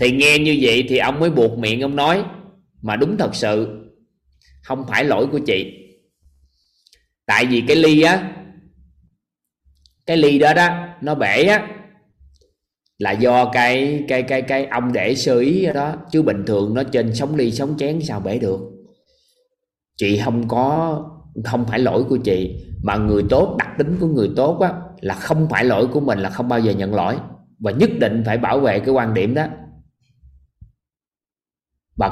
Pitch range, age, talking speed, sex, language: 110-160 Hz, 20-39, 180 wpm, male, Vietnamese